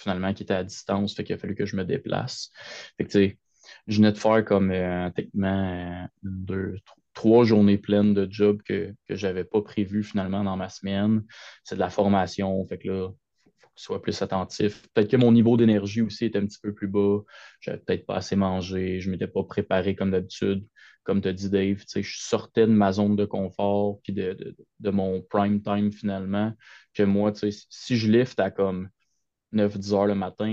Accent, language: Canadian, French